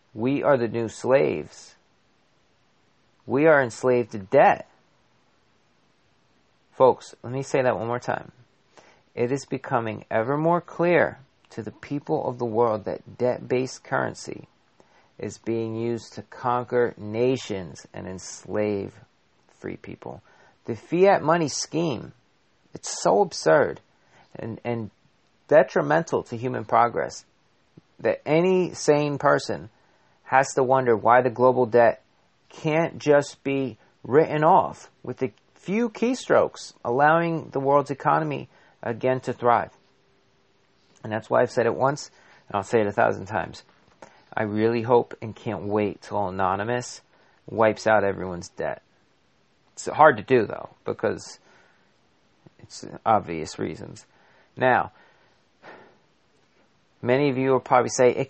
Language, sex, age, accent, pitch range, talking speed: English, male, 40-59, American, 115-140 Hz, 130 wpm